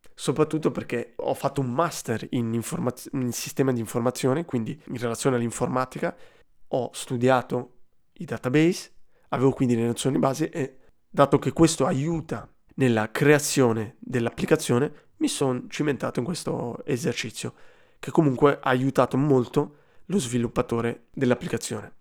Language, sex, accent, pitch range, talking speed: Italian, male, native, 125-150 Hz, 130 wpm